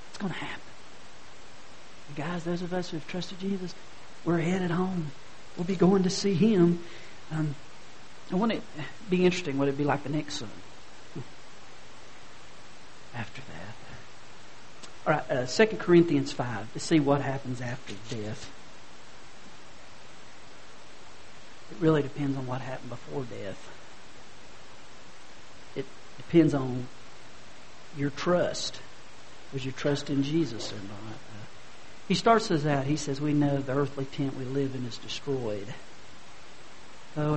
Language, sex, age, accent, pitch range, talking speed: English, male, 50-69, American, 130-160 Hz, 135 wpm